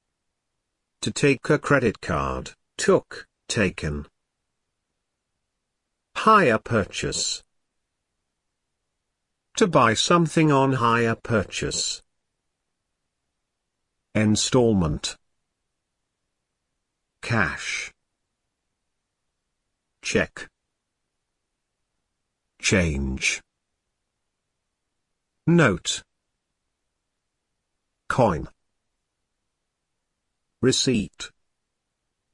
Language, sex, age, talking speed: Hungarian, male, 50-69, 40 wpm